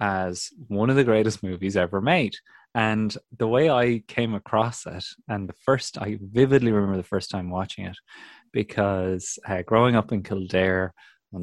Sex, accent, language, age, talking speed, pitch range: male, Irish, English, 20-39, 175 wpm, 100-125 Hz